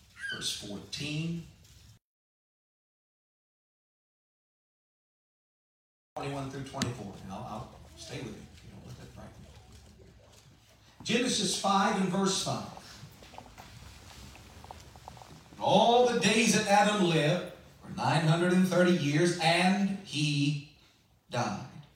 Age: 40-59